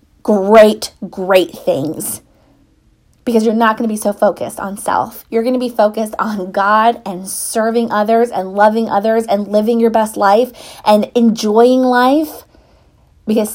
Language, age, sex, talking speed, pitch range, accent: English, 20-39, female, 155 wpm, 200-240 Hz, American